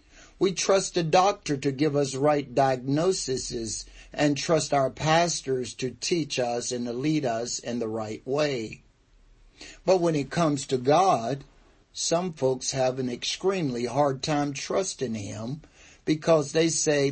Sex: male